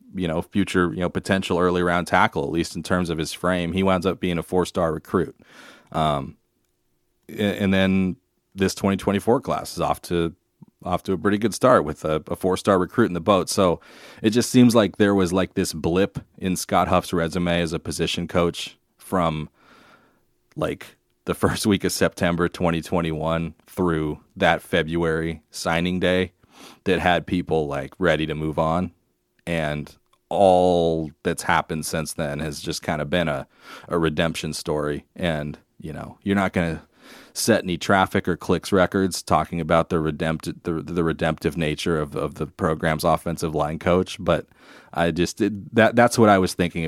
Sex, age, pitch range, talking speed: male, 30-49, 80-95 Hz, 175 wpm